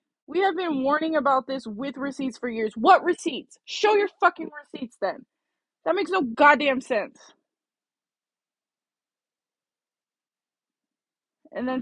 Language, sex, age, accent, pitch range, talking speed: English, female, 20-39, American, 230-295 Hz, 120 wpm